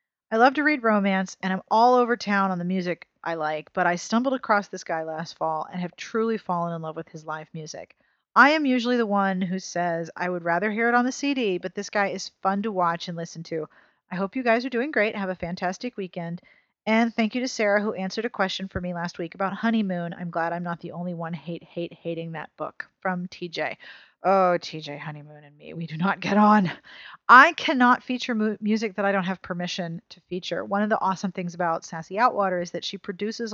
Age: 40-59